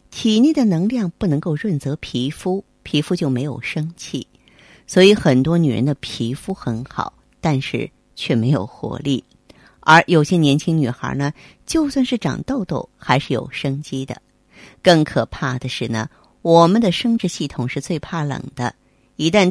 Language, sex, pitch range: Chinese, female, 135-180 Hz